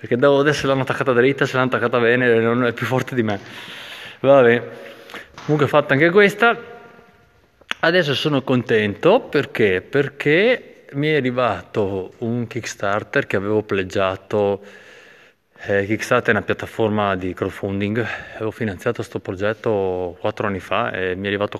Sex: male